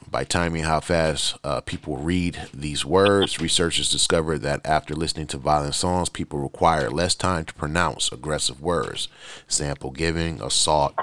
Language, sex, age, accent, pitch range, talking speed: English, male, 30-49, American, 70-85 Hz, 150 wpm